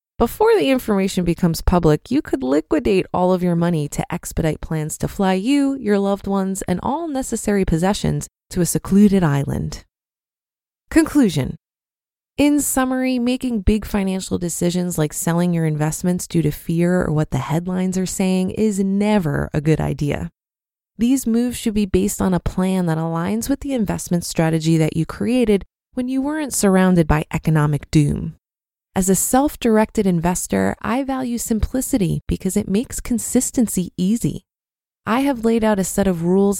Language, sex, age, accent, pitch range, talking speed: English, female, 20-39, American, 165-225 Hz, 160 wpm